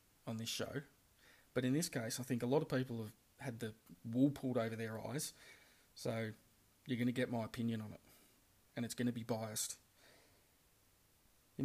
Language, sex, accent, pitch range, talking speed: English, male, Australian, 115-135 Hz, 190 wpm